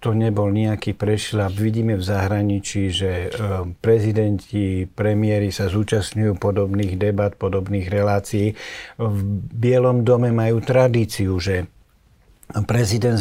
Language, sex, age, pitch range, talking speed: Slovak, male, 60-79, 100-120 Hz, 105 wpm